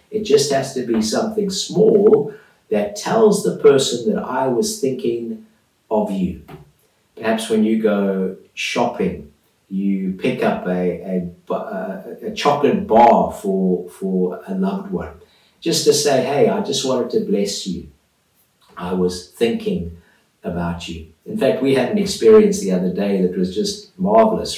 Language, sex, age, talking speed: English, male, 50-69, 155 wpm